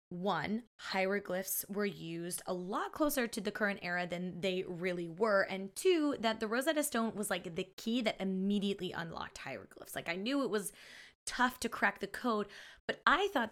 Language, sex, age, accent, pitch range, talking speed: English, female, 20-39, American, 180-225 Hz, 185 wpm